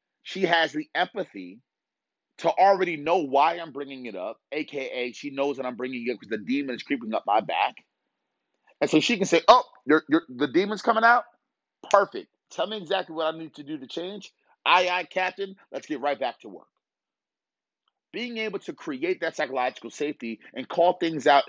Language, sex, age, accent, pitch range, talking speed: English, male, 30-49, American, 155-220 Hz, 200 wpm